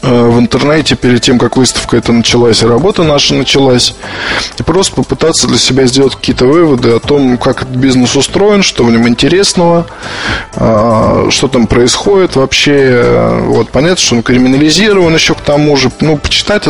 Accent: native